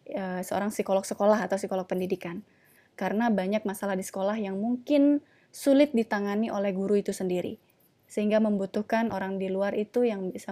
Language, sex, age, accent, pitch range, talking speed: Indonesian, female, 20-39, native, 190-220 Hz, 155 wpm